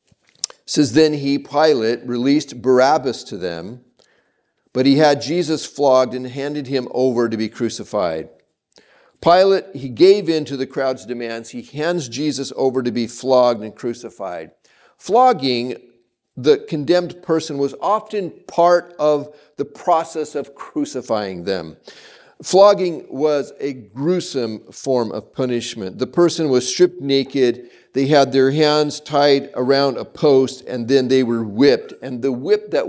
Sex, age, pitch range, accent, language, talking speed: male, 40-59, 130-160 Hz, American, English, 145 wpm